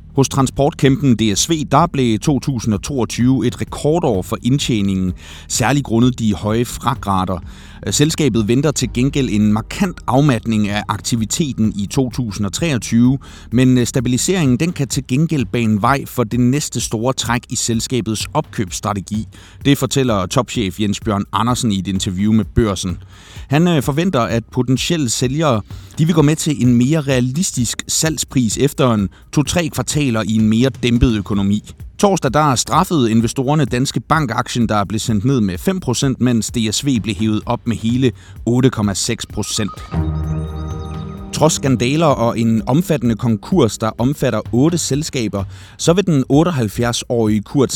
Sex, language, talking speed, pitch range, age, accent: male, Danish, 140 wpm, 105-135 Hz, 30-49, native